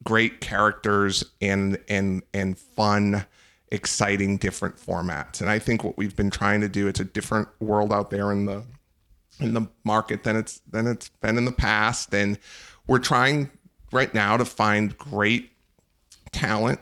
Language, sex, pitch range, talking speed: English, male, 100-110 Hz, 165 wpm